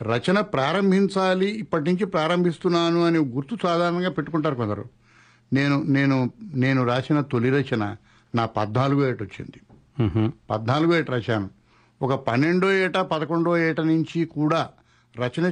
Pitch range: 115-165 Hz